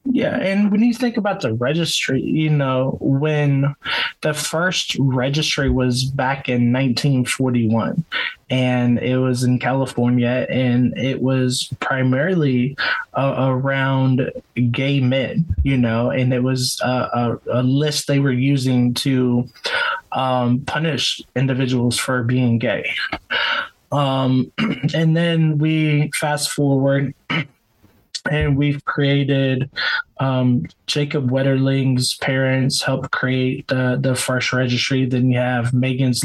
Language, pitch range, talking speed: English, 125-145 Hz, 120 wpm